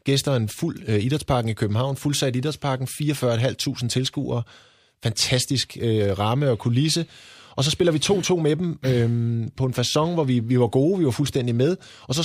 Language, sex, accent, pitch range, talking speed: Danish, male, native, 110-140 Hz, 185 wpm